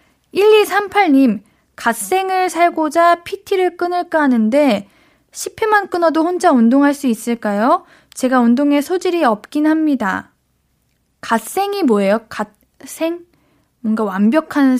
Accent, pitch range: native, 230-350 Hz